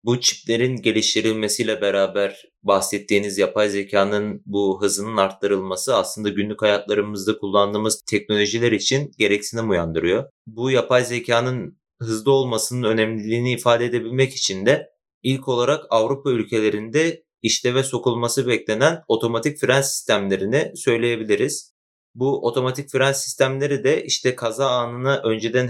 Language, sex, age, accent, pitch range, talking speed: Turkish, male, 30-49, native, 105-130 Hz, 115 wpm